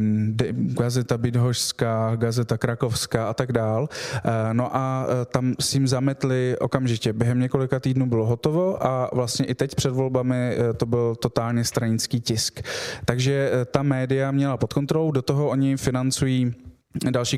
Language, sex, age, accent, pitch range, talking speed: Czech, male, 20-39, native, 120-135 Hz, 140 wpm